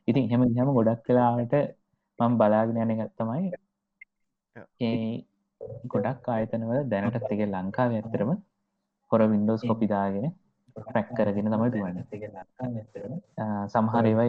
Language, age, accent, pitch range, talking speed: English, 20-39, Indian, 105-125 Hz, 125 wpm